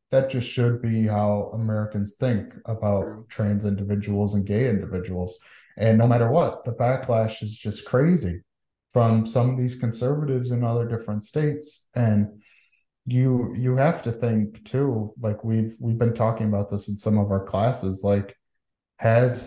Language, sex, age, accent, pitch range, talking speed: English, male, 20-39, American, 100-115 Hz, 160 wpm